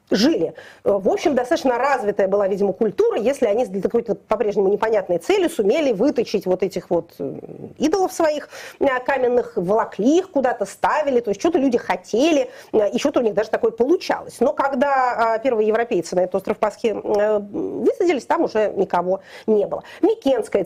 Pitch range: 200-300 Hz